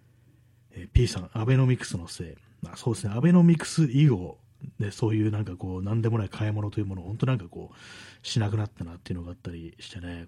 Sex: male